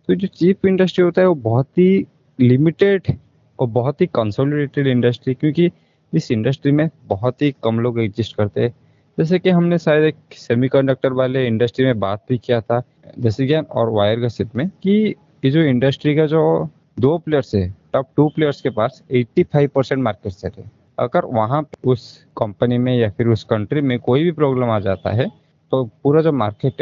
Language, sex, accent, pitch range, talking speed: Hindi, male, native, 115-155 Hz, 185 wpm